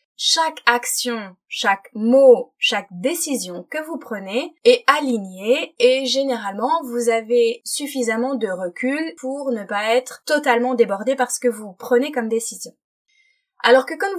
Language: French